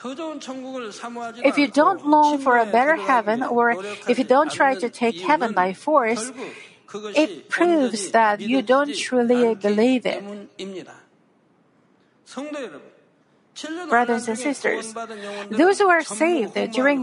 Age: 50-69